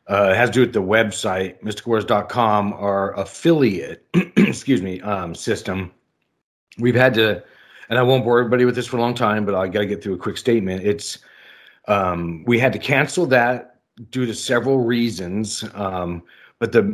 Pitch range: 100-125 Hz